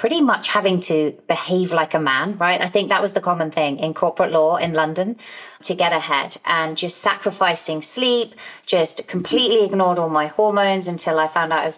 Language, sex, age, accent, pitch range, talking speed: English, female, 30-49, British, 160-190 Hz, 205 wpm